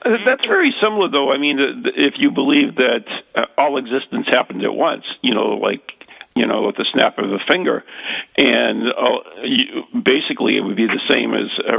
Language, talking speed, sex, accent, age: English, 195 wpm, male, American, 50-69